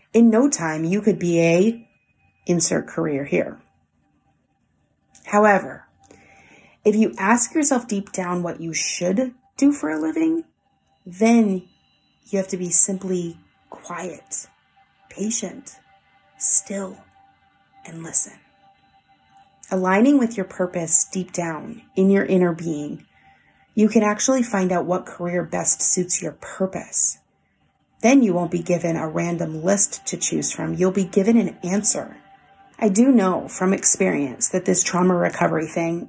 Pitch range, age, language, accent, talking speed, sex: 170-200 Hz, 30-49, English, American, 135 wpm, female